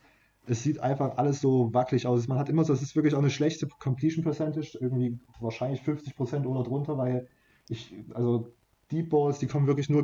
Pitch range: 120-135 Hz